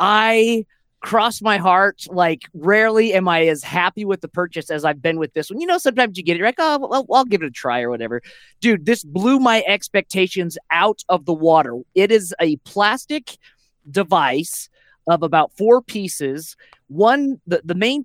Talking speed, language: 195 wpm, English